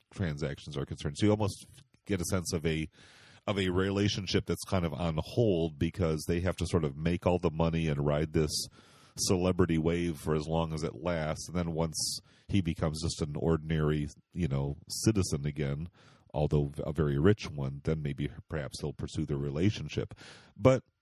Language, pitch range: English, 80-100 Hz